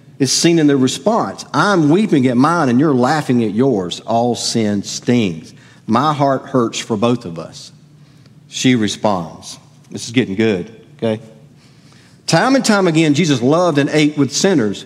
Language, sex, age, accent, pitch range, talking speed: English, male, 50-69, American, 120-155 Hz, 165 wpm